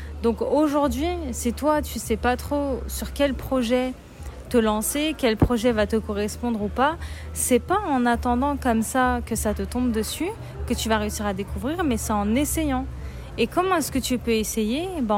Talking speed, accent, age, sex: 200 wpm, French, 30-49, female